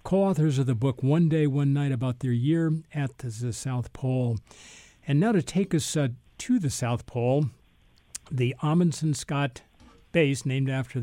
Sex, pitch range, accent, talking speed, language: male, 120-150 Hz, American, 165 wpm, English